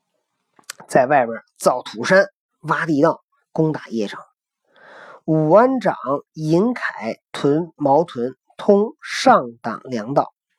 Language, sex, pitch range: Chinese, male, 145-225 Hz